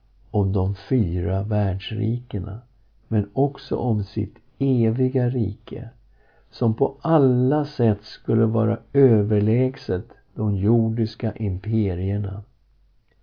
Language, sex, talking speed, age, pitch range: Swedish, male, 90 wpm, 60-79, 105-125 Hz